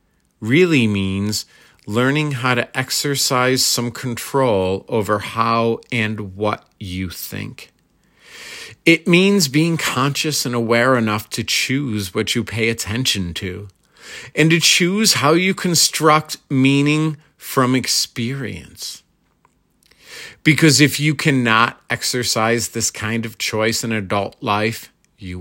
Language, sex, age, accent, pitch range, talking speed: English, male, 40-59, American, 105-140 Hz, 120 wpm